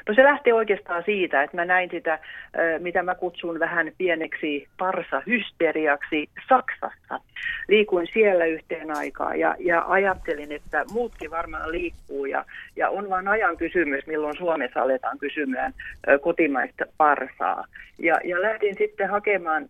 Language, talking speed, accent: Finnish, 135 wpm, native